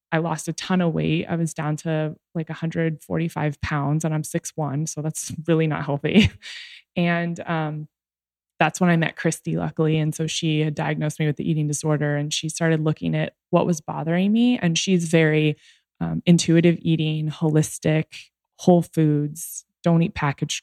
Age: 20-39